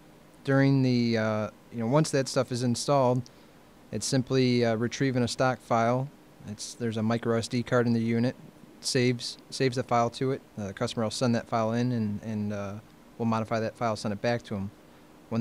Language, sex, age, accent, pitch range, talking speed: English, male, 20-39, American, 110-120 Hz, 210 wpm